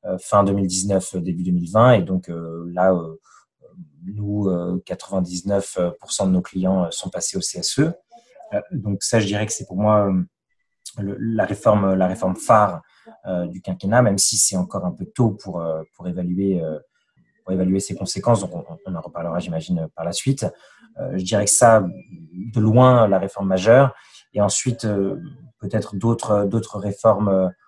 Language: French